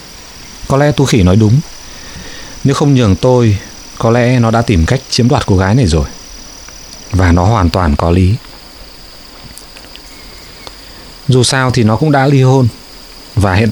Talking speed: 165 wpm